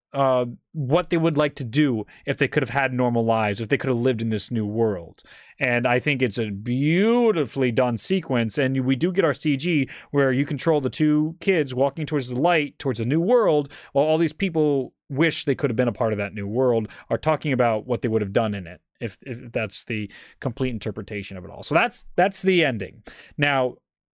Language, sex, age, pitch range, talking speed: English, male, 30-49, 125-170 Hz, 225 wpm